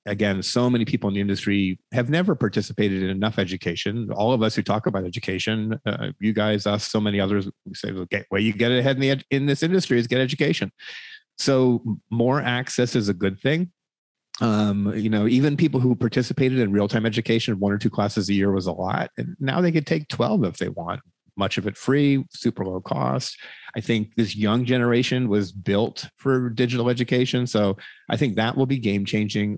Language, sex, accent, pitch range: English, male, American, 100-125 Hz